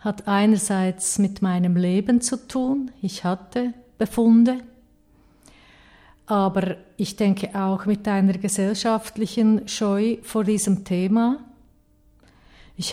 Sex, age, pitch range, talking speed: female, 50-69, 190-220 Hz, 100 wpm